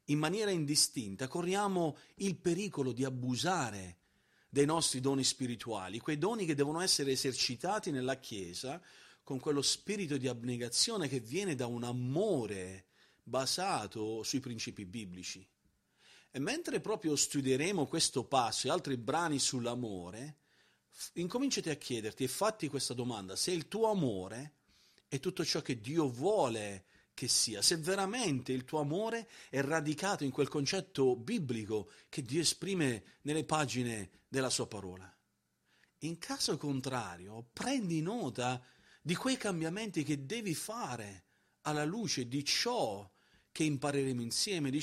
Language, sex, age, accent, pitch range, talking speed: Italian, male, 40-59, native, 125-165 Hz, 135 wpm